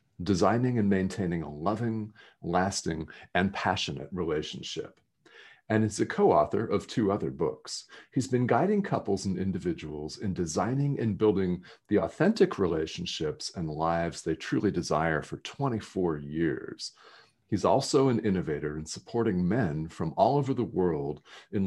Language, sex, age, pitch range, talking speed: English, male, 40-59, 85-110 Hz, 140 wpm